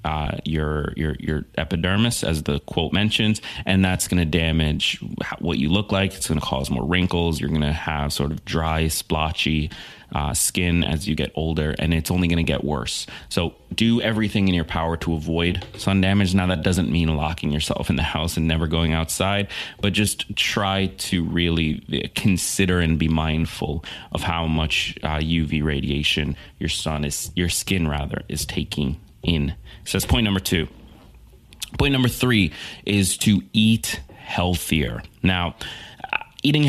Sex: male